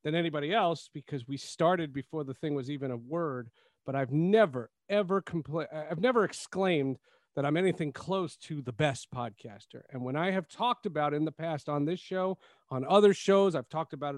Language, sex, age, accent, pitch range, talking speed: English, male, 40-59, American, 140-180 Hz, 200 wpm